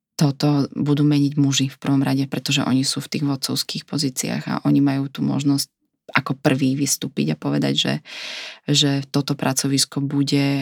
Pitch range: 140-150 Hz